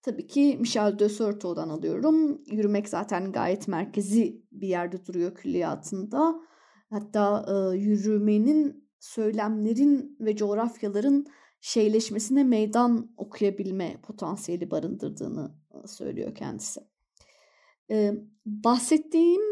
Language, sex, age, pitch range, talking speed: Turkish, female, 30-49, 195-235 Hz, 85 wpm